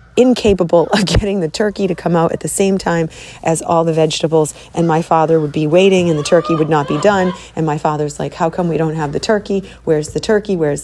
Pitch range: 170-205 Hz